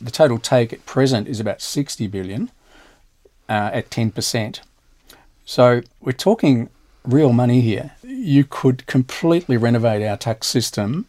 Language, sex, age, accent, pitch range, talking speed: English, male, 40-59, Australian, 110-130 Hz, 135 wpm